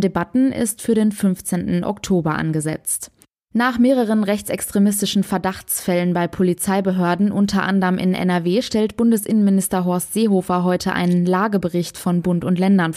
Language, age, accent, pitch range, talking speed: German, 20-39, German, 185-210 Hz, 130 wpm